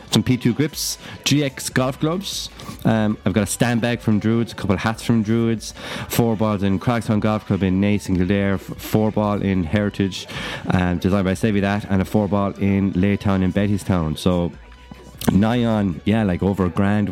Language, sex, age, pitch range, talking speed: English, male, 30-49, 95-115 Hz, 185 wpm